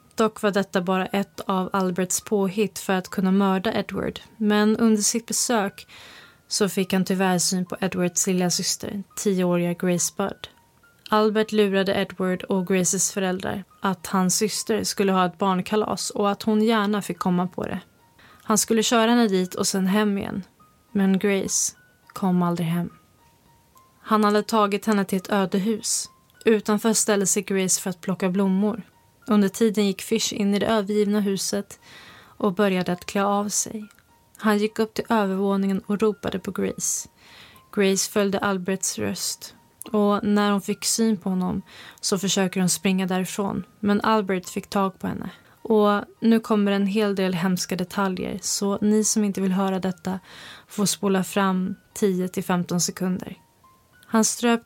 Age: 20-39